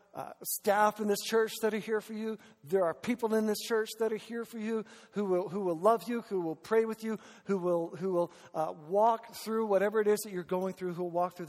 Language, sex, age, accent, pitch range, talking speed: English, male, 50-69, American, 165-215 Hz, 260 wpm